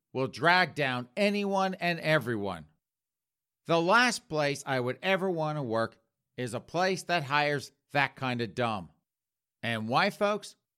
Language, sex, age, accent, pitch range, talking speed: English, male, 50-69, American, 105-150 Hz, 150 wpm